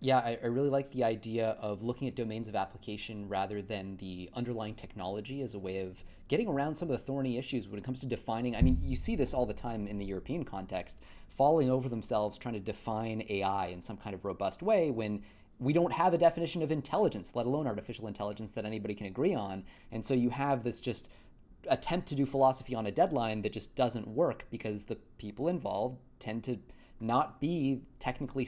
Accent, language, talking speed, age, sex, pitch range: American, English, 215 wpm, 30-49, male, 105-140 Hz